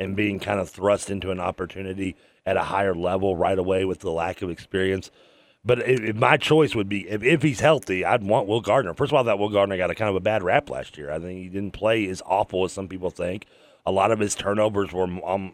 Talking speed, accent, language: 265 wpm, American, English